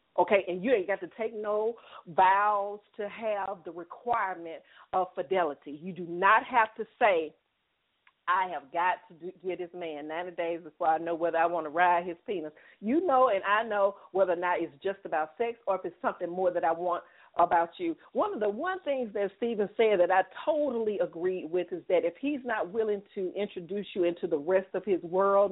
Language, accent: English, American